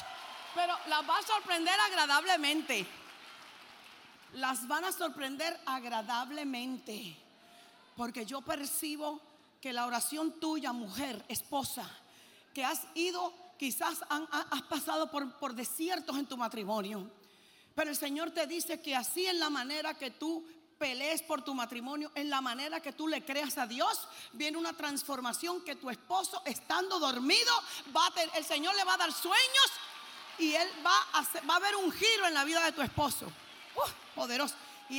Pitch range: 280-360 Hz